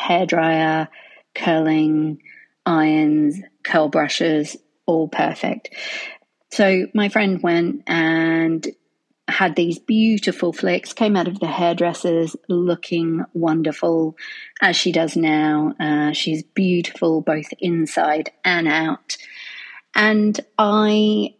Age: 40-59